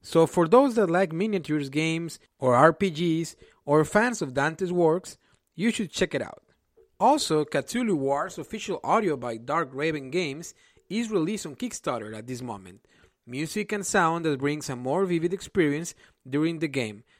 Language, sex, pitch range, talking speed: English, male, 140-195 Hz, 165 wpm